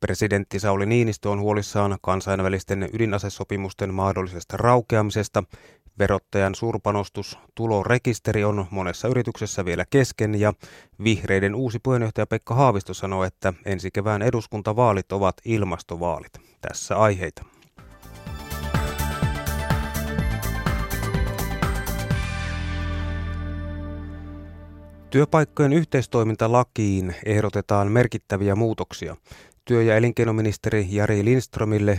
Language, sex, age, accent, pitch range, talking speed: Finnish, male, 30-49, native, 95-110 Hz, 80 wpm